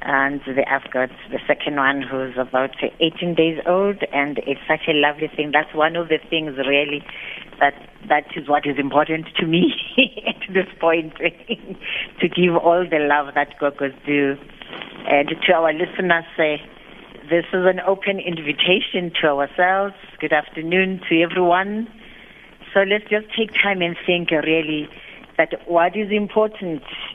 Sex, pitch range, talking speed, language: female, 150-180 Hz, 155 wpm, English